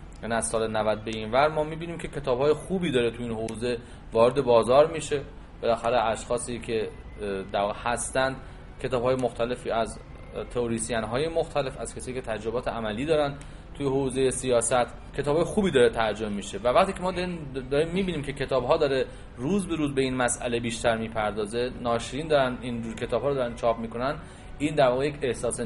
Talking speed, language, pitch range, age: 175 wpm, Persian, 115-140 Hz, 30-49